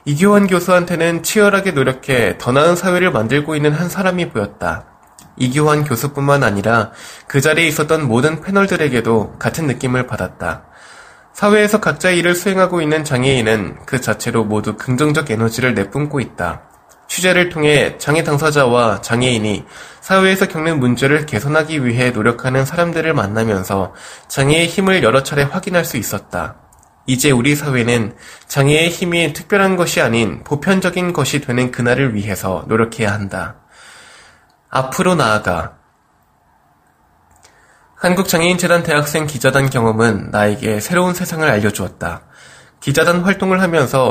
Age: 20-39